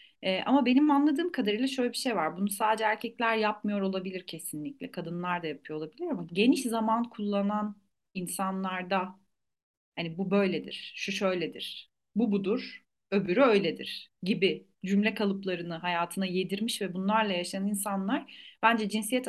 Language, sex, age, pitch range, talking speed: Turkish, female, 40-59, 190-225 Hz, 135 wpm